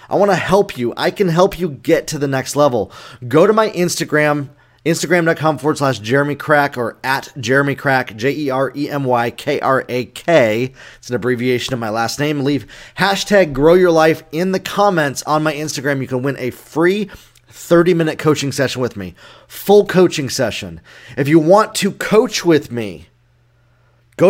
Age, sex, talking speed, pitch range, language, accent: 30-49, male, 170 wpm, 125-170 Hz, English, American